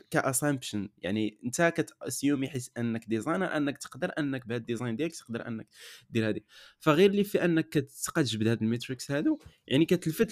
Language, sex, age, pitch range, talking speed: Arabic, male, 20-39, 120-160 Hz, 155 wpm